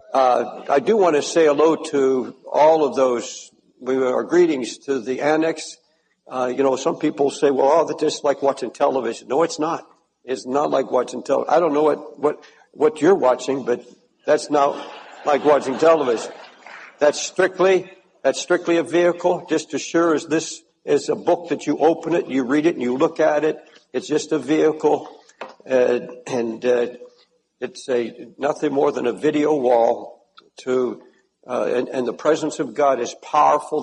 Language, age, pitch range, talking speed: English, 60-79, 135-170 Hz, 185 wpm